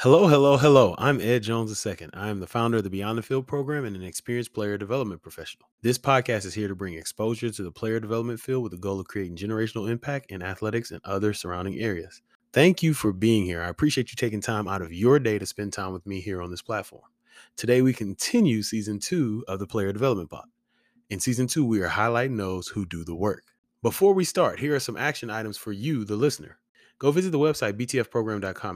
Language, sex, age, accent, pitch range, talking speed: English, male, 20-39, American, 100-130 Hz, 225 wpm